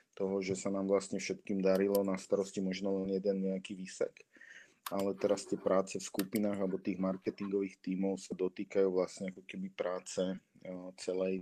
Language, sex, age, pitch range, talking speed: Slovak, male, 20-39, 95-100 Hz, 165 wpm